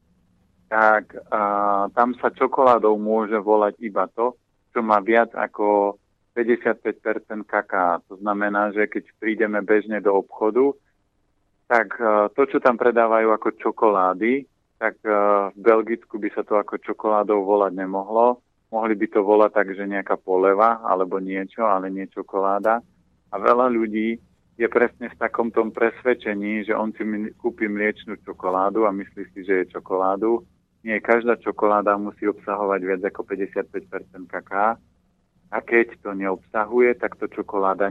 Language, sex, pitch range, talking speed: Slovak, male, 100-110 Hz, 145 wpm